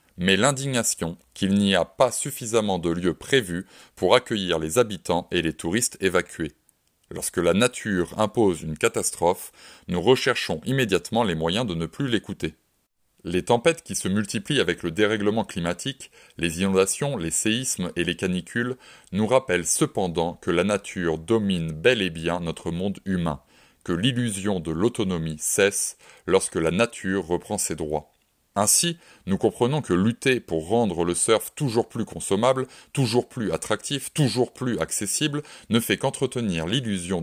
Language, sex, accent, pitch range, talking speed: French, male, French, 90-120 Hz, 155 wpm